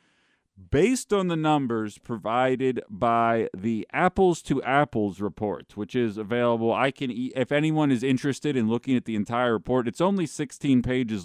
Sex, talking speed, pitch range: male, 165 wpm, 105-135 Hz